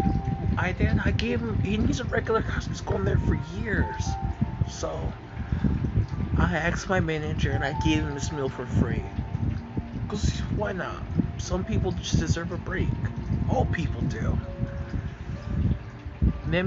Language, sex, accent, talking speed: English, male, American, 150 wpm